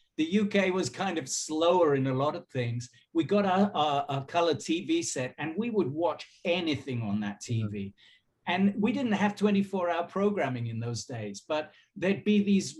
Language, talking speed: English, 190 wpm